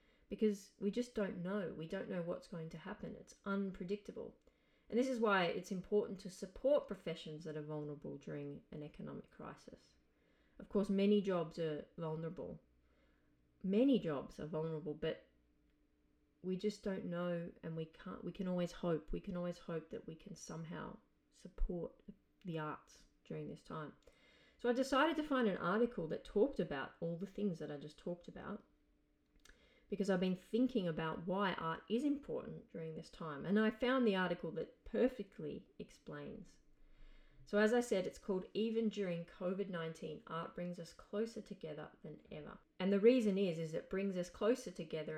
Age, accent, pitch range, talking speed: 30-49, Australian, 160-210 Hz, 175 wpm